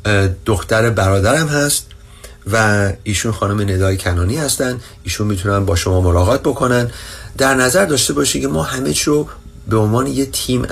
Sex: male